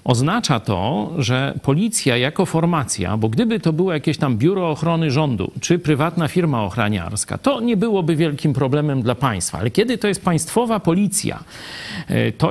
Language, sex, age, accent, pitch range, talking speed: Polish, male, 40-59, native, 135-185 Hz, 160 wpm